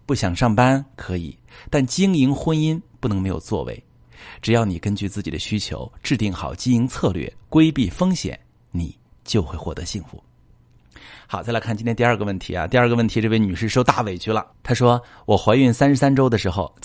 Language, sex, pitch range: Chinese, male, 95-125 Hz